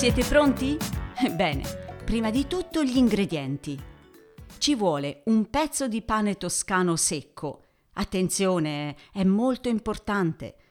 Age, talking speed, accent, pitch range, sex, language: 50-69, 110 wpm, native, 165-250 Hz, female, Italian